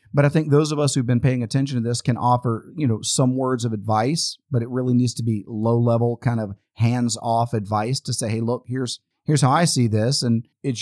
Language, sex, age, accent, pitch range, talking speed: English, male, 40-59, American, 105-130 Hz, 250 wpm